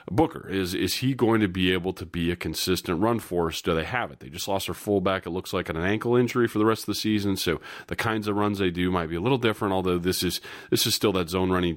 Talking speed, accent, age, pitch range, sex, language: 290 wpm, American, 30-49, 85-105 Hz, male, English